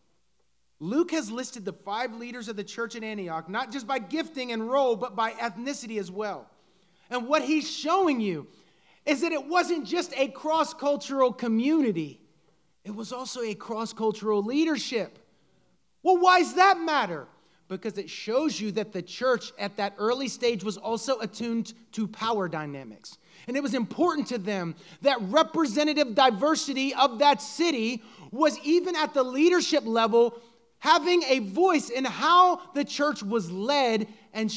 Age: 30-49